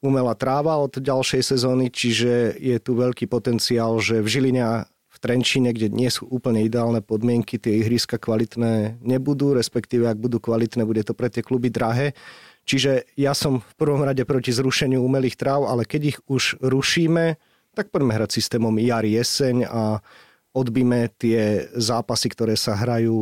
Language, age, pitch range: Slovak, 30-49, 115-130 Hz